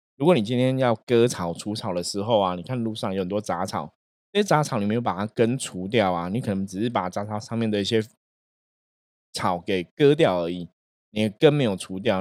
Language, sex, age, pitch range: Chinese, male, 20-39, 95-120 Hz